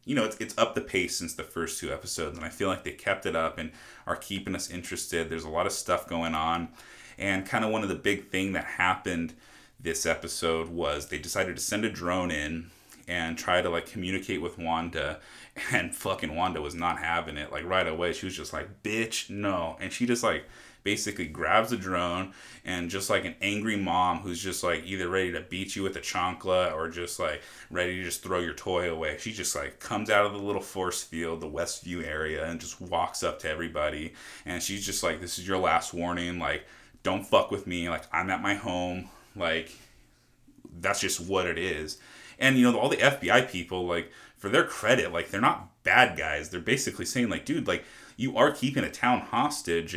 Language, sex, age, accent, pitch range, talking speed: English, male, 30-49, American, 85-105 Hz, 220 wpm